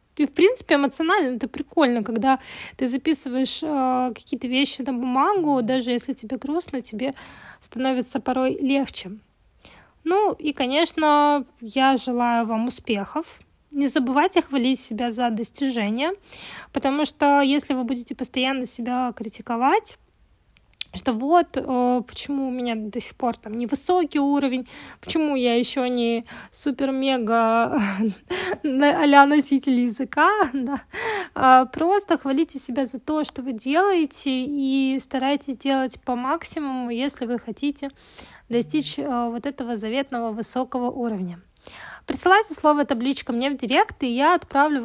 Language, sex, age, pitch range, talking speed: Russian, female, 20-39, 245-290 Hz, 120 wpm